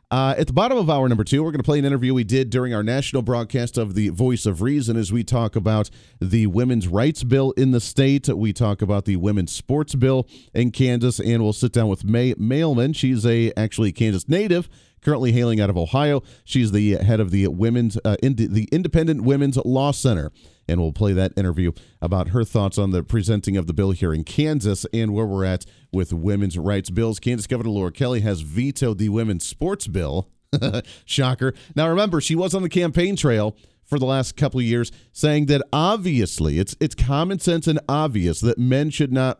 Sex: male